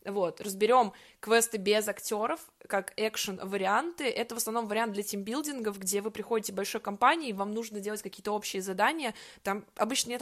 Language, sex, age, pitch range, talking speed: Russian, female, 20-39, 195-245 Hz, 165 wpm